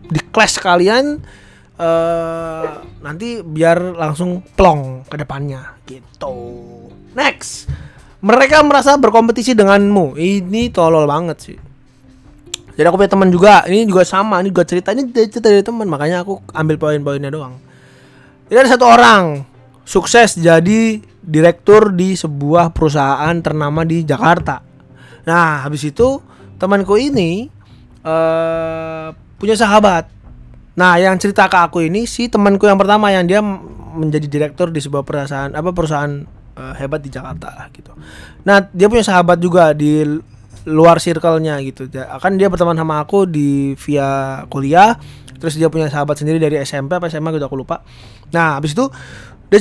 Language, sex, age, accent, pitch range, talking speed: English, male, 20-39, Indonesian, 145-195 Hz, 145 wpm